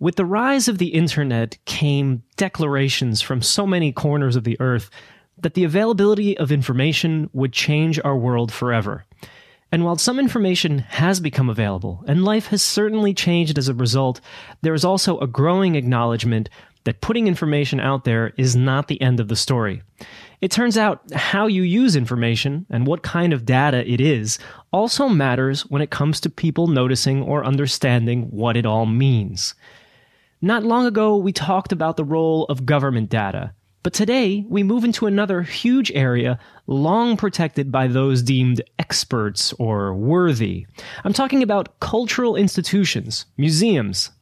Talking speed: 160 wpm